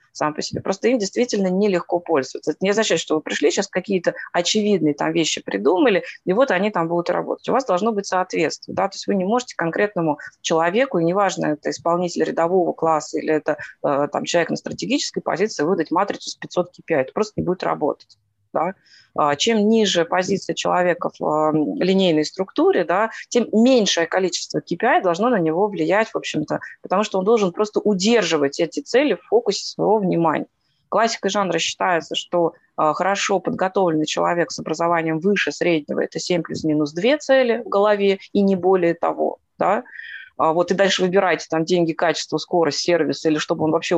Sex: female